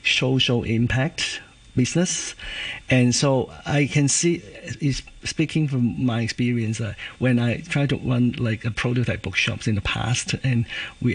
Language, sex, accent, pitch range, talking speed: English, male, Chinese, 120-135 Hz, 150 wpm